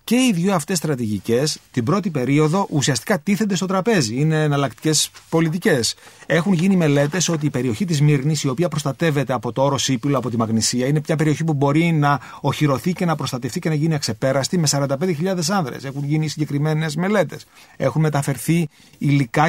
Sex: male